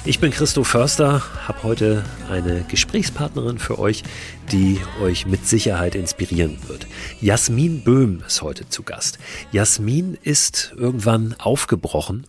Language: German